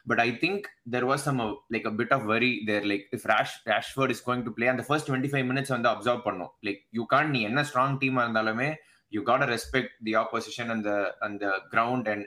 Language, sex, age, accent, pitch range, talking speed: Tamil, male, 20-39, native, 110-135 Hz, 230 wpm